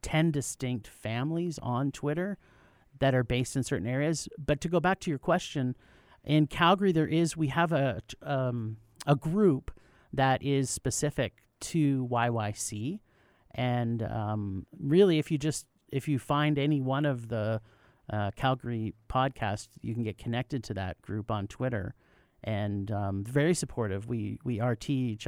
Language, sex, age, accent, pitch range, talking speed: English, male, 40-59, American, 115-145 Hz, 155 wpm